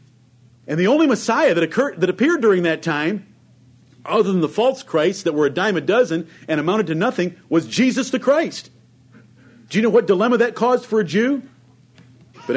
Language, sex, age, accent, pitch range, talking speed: English, male, 50-69, American, 125-175 Hz, 195 wpm